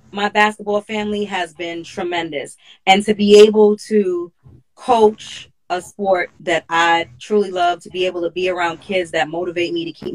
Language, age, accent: English, 30-49, American